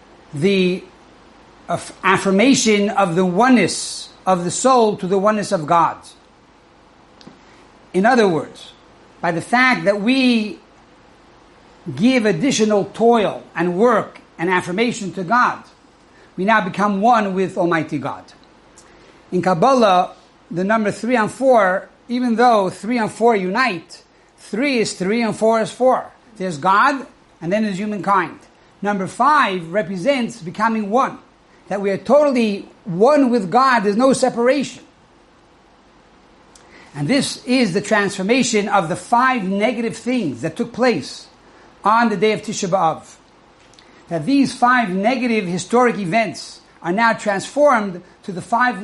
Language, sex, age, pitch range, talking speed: English, male, 60-79, 185-240 Hz, 135 wpm